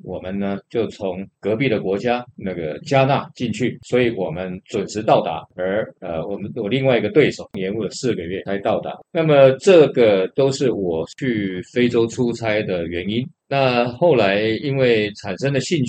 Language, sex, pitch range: Chinese, male, 100-135 Hz